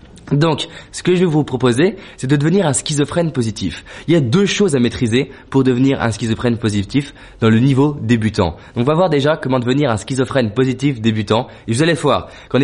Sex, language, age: male, French, 20-39